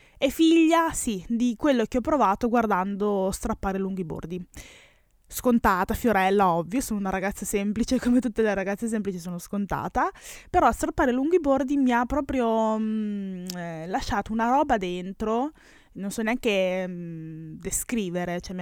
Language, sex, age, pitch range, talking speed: Italian, female, 20-39, 190-240 Hz, 145 wpm